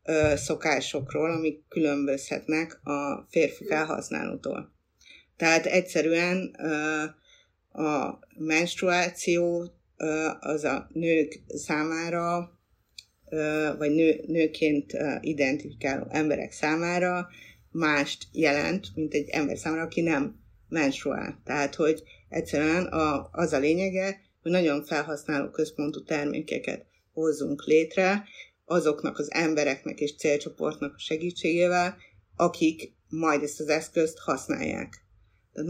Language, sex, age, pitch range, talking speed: Hungarian, female, 50-69, 145-165 Hz, 90 wpm